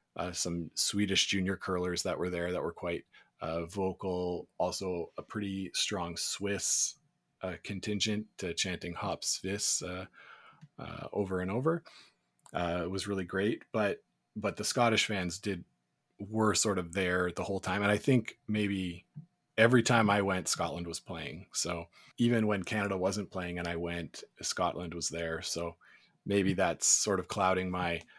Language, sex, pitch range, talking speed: English, male, 90-110 Hz, 165 wpm